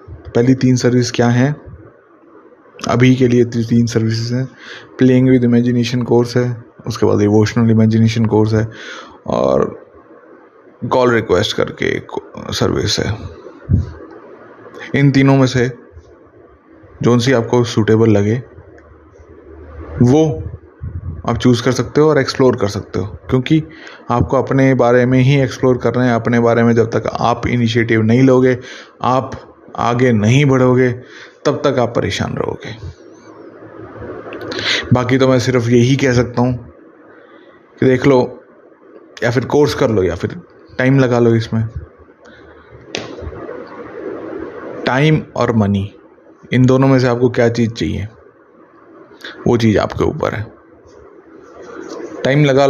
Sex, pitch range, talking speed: male, 115-130 Hz, 135 wpm